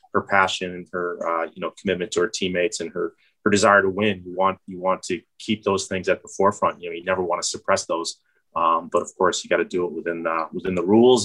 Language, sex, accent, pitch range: English, male, American, 85-95 Hz